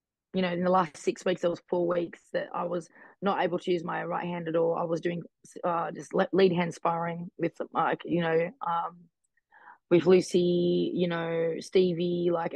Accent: Australian